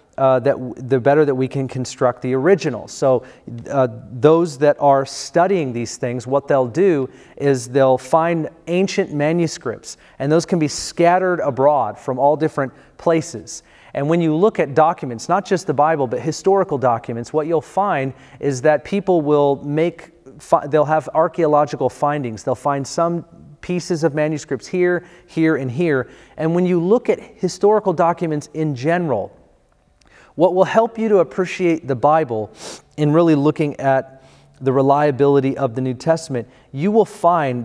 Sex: male